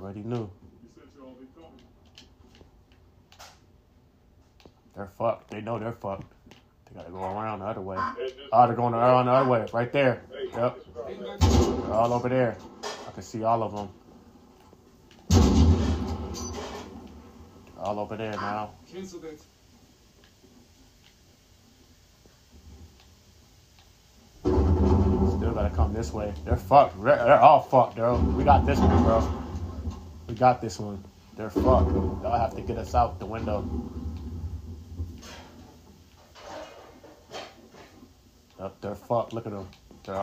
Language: English